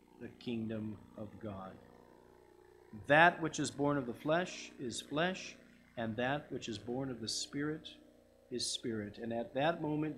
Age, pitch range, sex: 50-69, 115-155 Hz, male